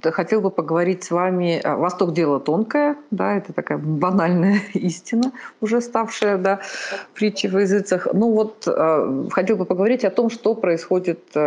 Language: Russian